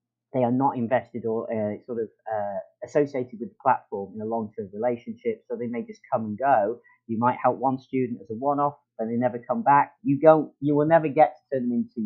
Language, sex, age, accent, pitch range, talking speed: English, male, 40-59, British, 110-150 Hz, 235 wpm